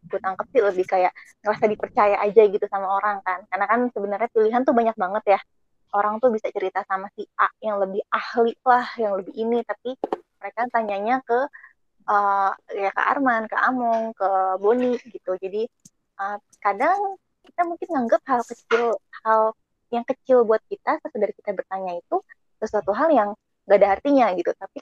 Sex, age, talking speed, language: female, 20-39, 170 wpm, Indonesian